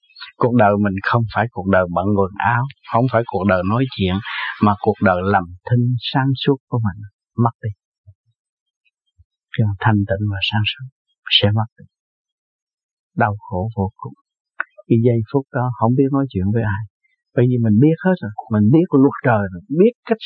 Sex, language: male, Vietnamese